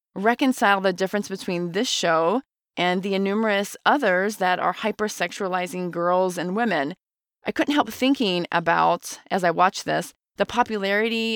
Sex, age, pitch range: female, 30-49, 180-230 Hz